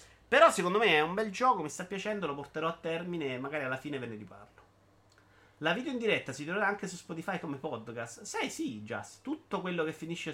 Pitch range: 105-160 Hz